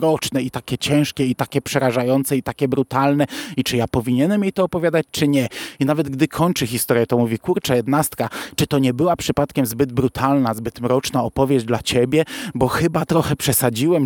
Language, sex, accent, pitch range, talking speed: Polish, male, native, 125-150 Hz, 185 wpm